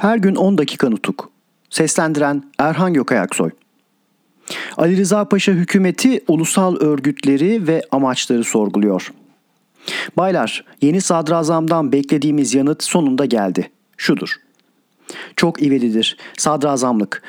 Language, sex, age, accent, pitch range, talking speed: Turkish, male, 40-59, native, 145-175 Hz, 95 wpm